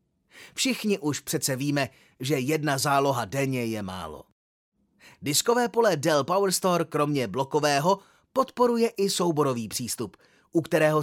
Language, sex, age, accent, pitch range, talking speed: Czech, male, 30-49, native, 140-180 Hz, 120 wpm